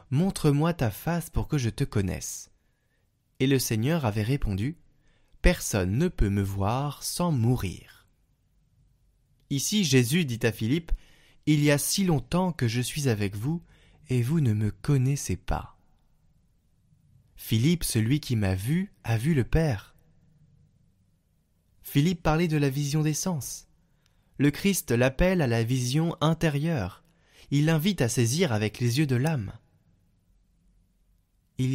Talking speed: 140 wpm